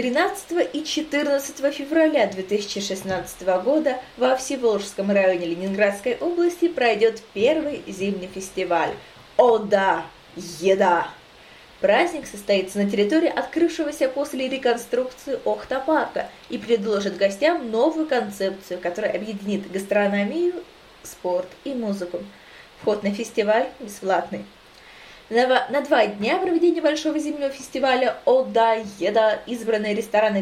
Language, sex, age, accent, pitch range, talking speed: Russian, female, 20-39, native, 200-285 Hz, 100 wpm